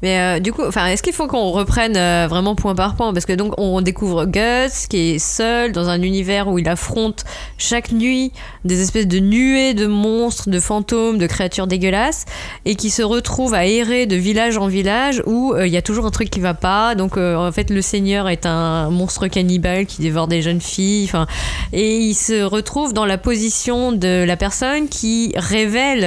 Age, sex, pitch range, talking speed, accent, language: 20-39, female, 180-225 Hz, 210 wpm, French, French